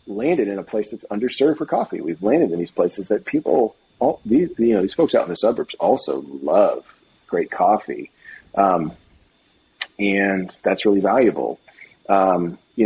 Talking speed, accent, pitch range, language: 170 wpm, American, 95-120 Hz, English